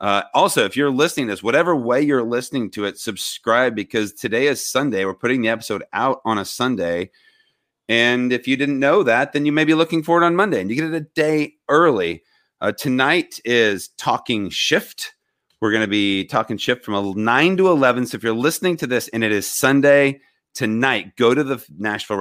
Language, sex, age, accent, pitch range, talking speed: English, male, 40-59, American, 95-140 Hz, 215 wpm